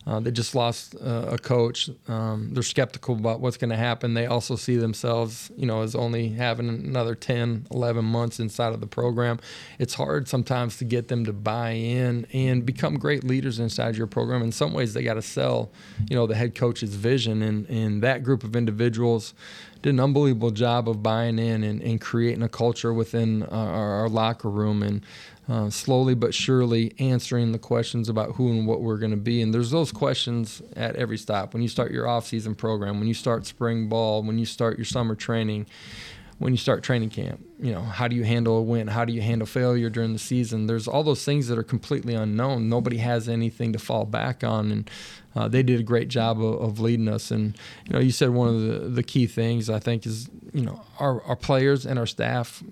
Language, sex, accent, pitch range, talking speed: English, male, American, 115-125 Hz, 220 wpm